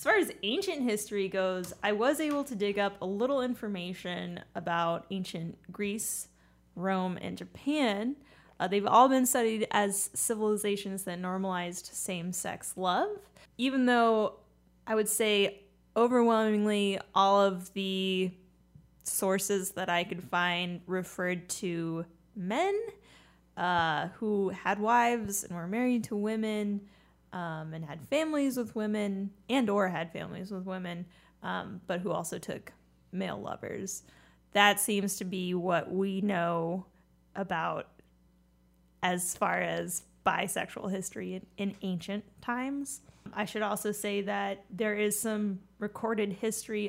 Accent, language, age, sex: American, English, 10-29, female